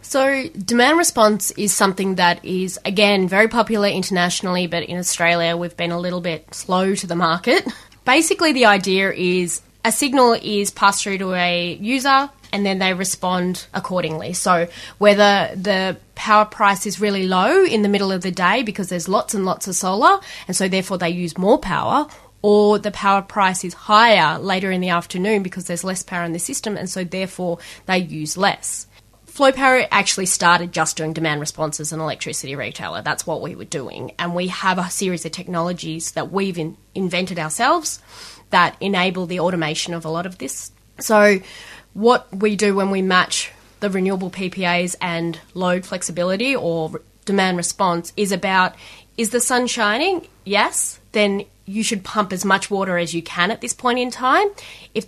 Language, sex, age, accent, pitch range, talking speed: English, female, 20-39, Australian, 175-210 Hz, 185 wpm